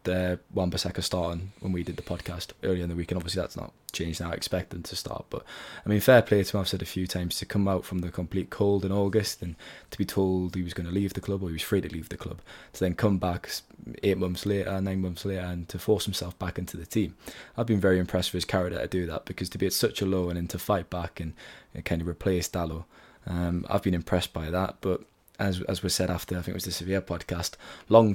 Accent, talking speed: British, 275 wpm